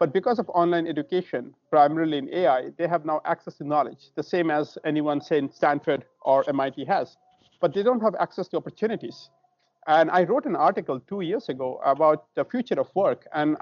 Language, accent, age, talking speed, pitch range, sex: English, Indian, 50-69, 200 wpm, 155-195 Hz, male